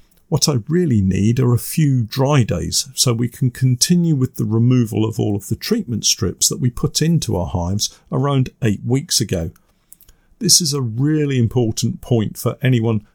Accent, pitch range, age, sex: British, 105-135 Hz, 50-69, male